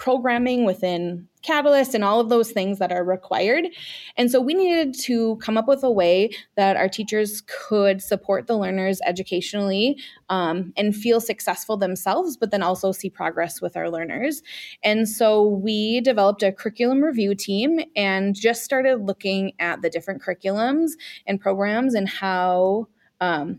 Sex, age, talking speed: female, 20-39, 160 wpm